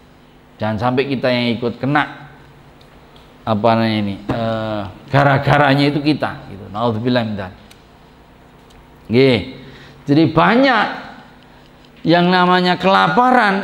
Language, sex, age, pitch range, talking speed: Indonesian, male, 40-59, 115-160 Hz, 90 wpm